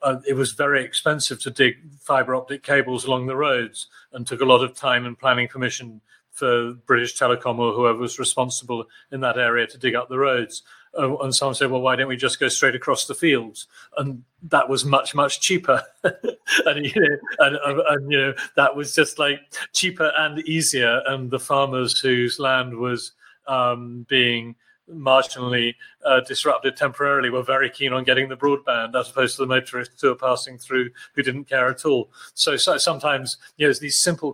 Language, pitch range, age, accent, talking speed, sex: English, 125-145 Hz, 40-59, British, 190 wpm, male